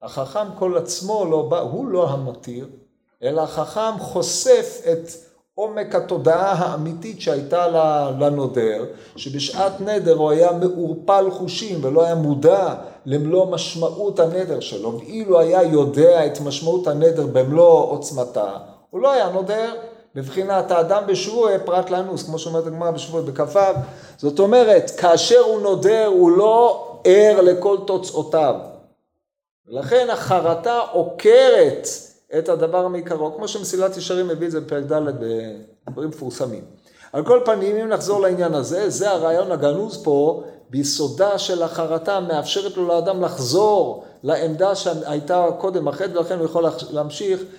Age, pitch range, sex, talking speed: 50-69, 155-195 Hz, male, 130 wpm